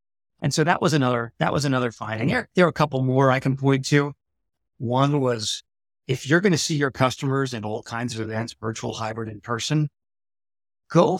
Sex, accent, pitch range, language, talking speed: male, American, 115-145 Hz, English, 205 wpm